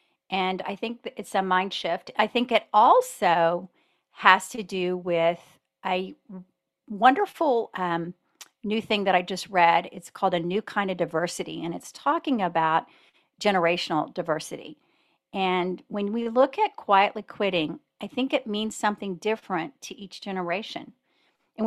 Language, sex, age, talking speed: English, female, 40-59, 150 wpm